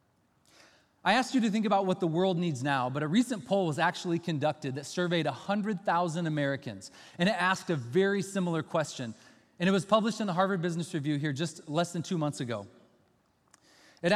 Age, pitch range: 30-49, 140-195 Hz